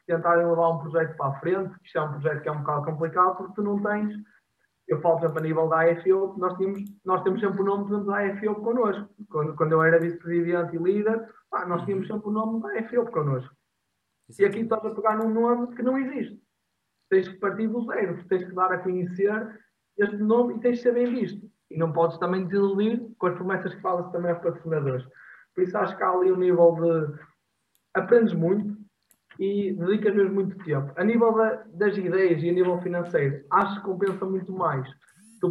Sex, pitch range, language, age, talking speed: male, 165-210 Hz, Portuguese, 20-39, 210 wpm